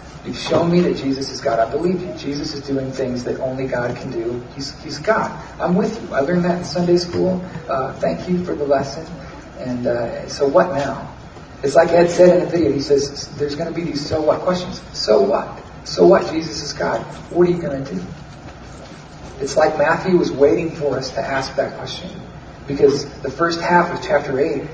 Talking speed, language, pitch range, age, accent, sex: 220 wpm, English, 135-175 Hz, 40-59, American, male